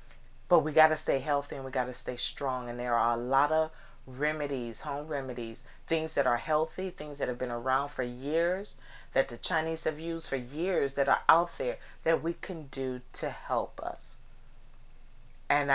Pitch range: 130-175 Hz